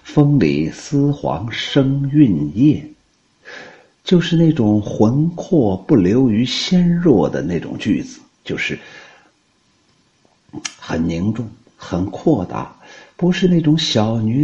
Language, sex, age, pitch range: Chinese, male, 50-69, 105-150 Hz